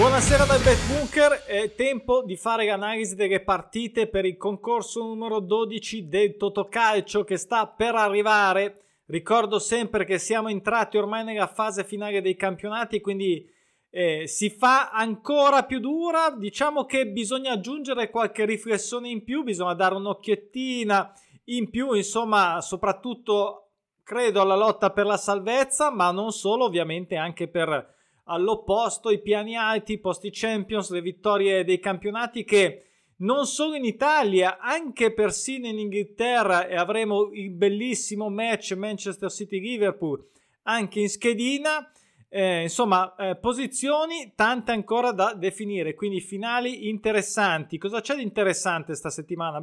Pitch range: 190-230 Hz